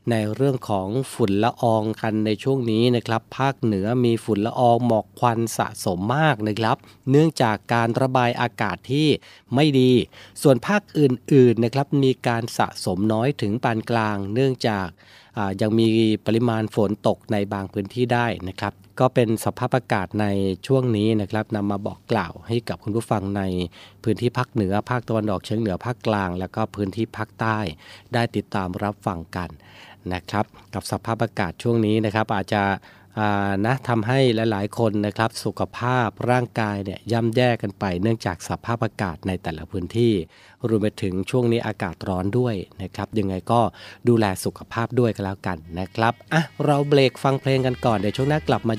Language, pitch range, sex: Thai, 100-120 Hz, male